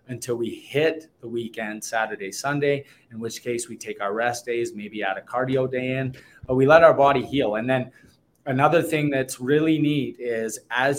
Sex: male